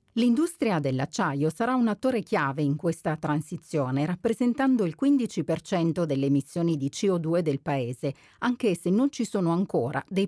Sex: female